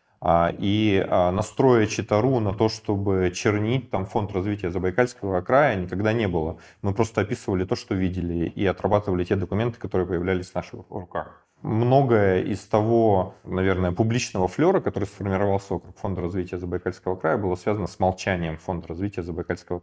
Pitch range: 90-110 Hz